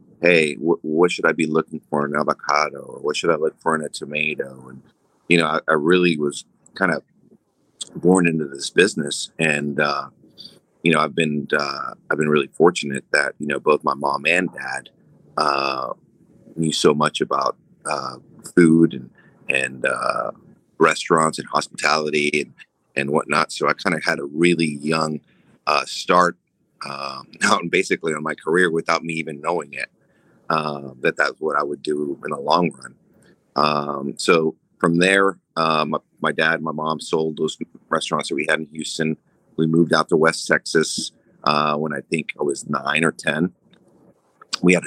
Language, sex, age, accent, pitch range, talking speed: English, male, 30-49, American, 75-80 Hz, 180 wpm